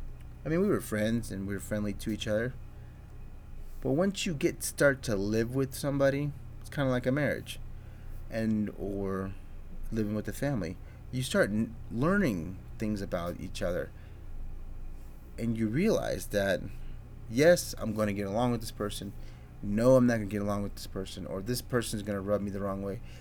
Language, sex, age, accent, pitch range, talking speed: English, male, 30-49, American, 95-115 Hz, 190 wpm